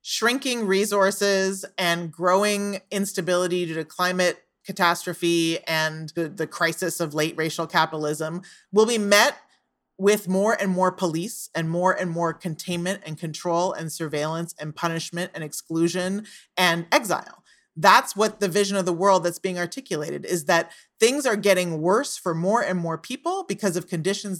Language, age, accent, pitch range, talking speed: English, 30-49, American, 165-195 Hz, 155 wpm